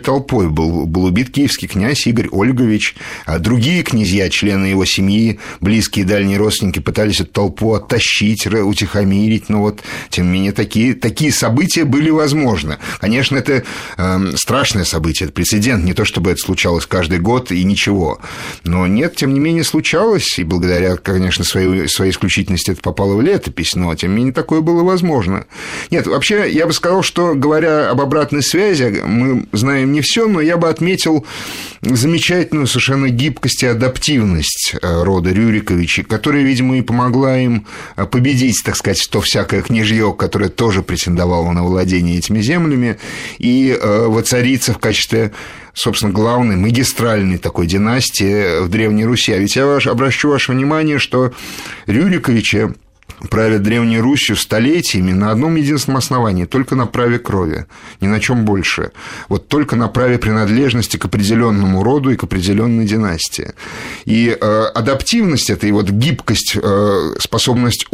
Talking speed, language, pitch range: 150 wpm, Russian, 95-130 Hz